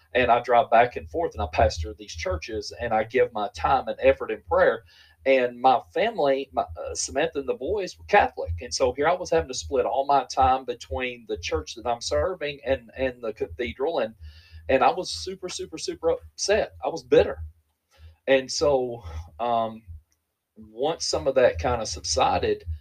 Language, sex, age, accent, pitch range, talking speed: English, male, 40-59, American, 85-135 Hz, 190 wpm